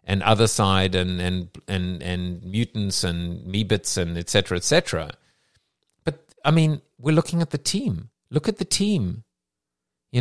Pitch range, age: 95-140 Hz, 50-69